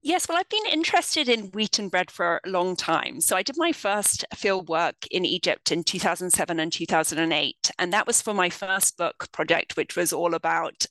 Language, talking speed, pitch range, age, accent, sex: English, 210 wpm, 170-220 Hz, 40-59, British, female